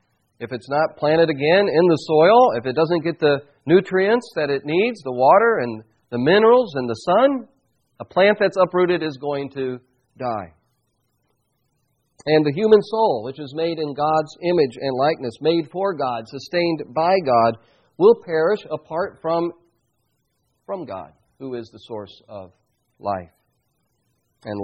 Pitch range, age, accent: 120-170 Hz, 40-59, American